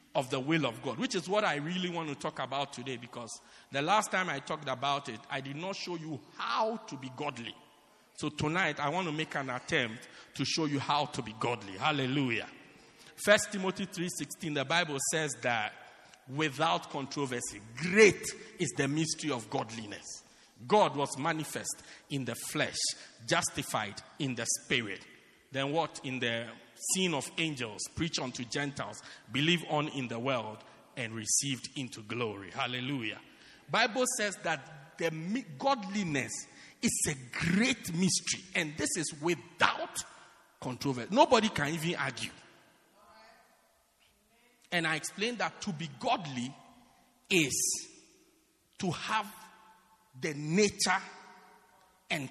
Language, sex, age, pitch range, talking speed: English, male, 50-69, 135-185 Hz, 145 wpm